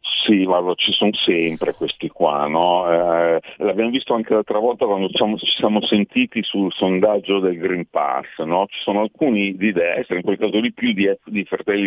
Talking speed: 190 wpm